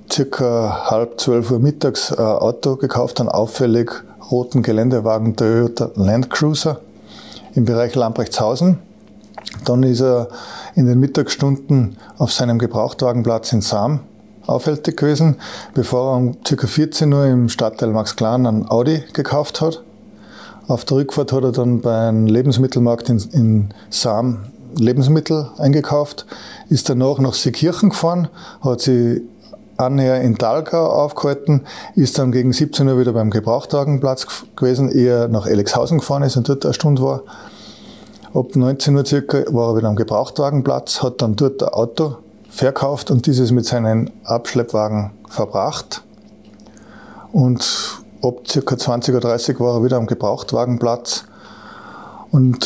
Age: 20-39